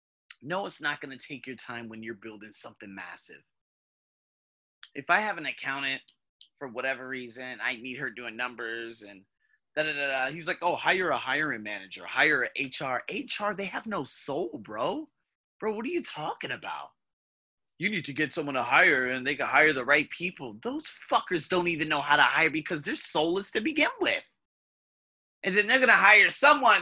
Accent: American